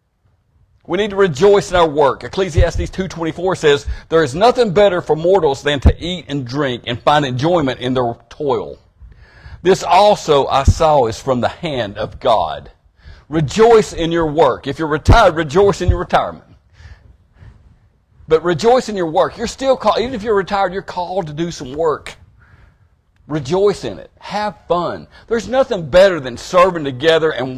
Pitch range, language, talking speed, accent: 115-180 Hz, English, 170 wpm, American